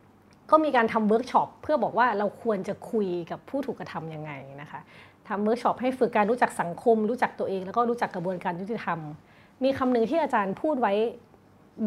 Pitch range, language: 185-245 Hz, Thai